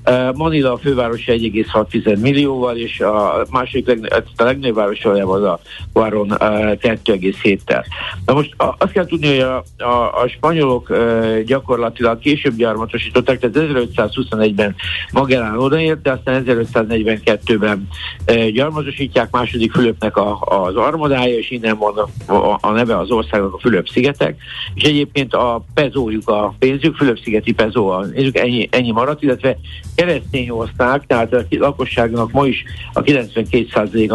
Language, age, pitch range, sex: Hungarian, 60-79, 110-135 Hz, male